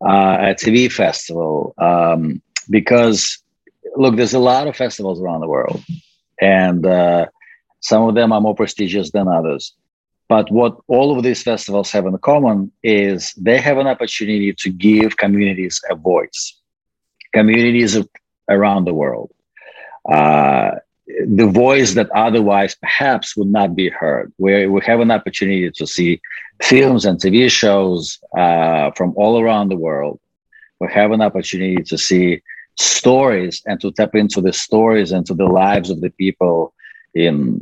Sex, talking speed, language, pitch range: male, 155 wpm, French, 95-115 Hz